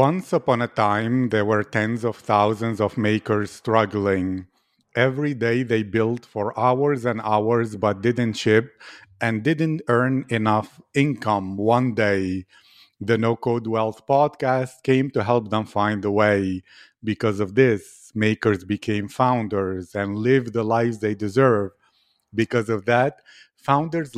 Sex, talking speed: male, 145 wpm